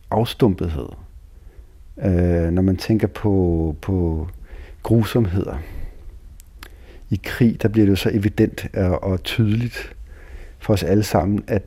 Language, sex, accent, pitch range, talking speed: Danish, male, native, 90-110 Hz, 120 wpm